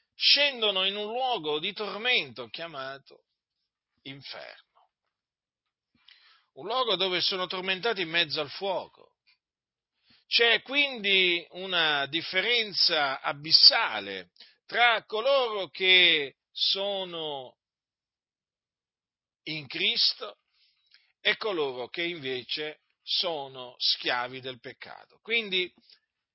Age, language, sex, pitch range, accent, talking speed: 50-69, Italian, male, 155-230 Hz, native, 85 wpm